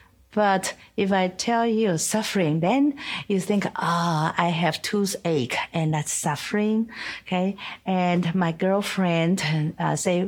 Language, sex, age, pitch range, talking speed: English, female, 50-69, 165-225 Hz, 130 wpm